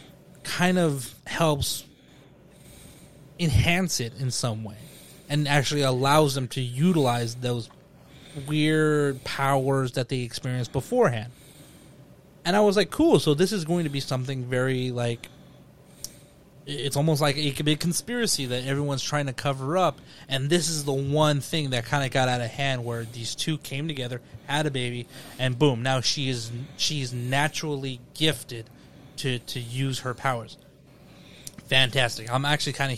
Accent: American